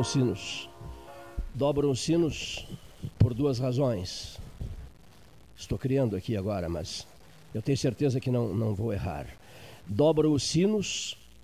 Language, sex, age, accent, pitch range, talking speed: Portuguese, male, 60-79, Brazilian, 100-140 Hz, 125 wpm